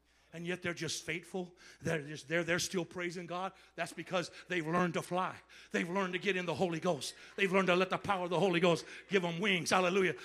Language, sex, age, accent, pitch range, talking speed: English, male, 60-79, American, 130-195 Hz, 235 wpm